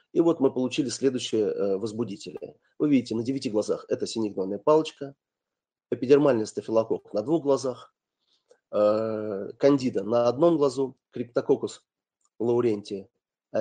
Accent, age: native, 30-49